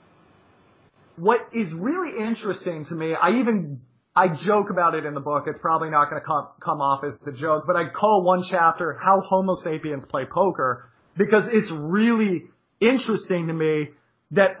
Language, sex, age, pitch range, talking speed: English, male, 30-49, 155-205 Hz, 170 wpm